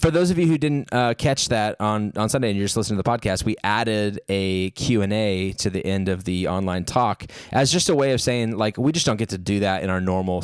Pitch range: 95-115 Hz